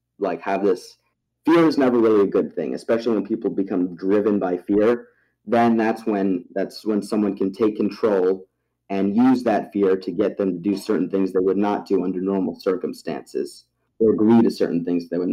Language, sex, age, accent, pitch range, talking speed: English, male, 30-49, American, 95-110 Hz, 200 wpm